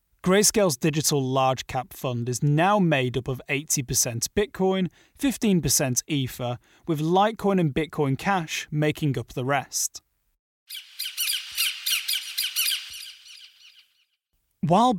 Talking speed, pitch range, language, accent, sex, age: 95 wpm, 140-195 Hz, English, British, male, 30-49